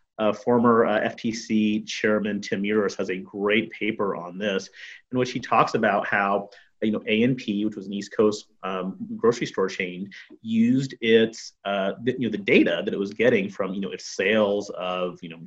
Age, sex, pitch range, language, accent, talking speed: 30-49, male, 105-145 Hz, English, American, 200 wpm